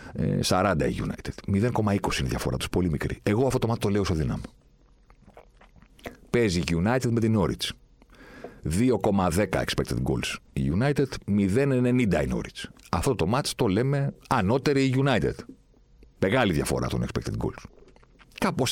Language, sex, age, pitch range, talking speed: Greek, male, 40-59, 80-125 Hz, 145 wpm